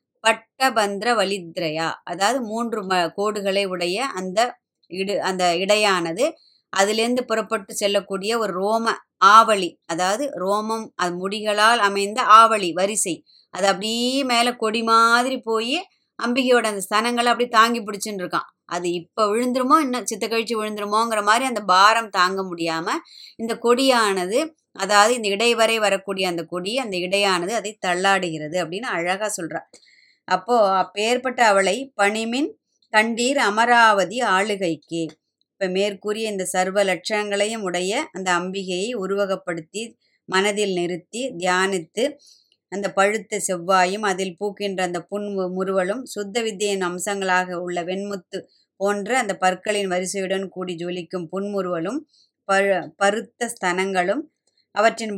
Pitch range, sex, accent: 185-225 Hz, male, native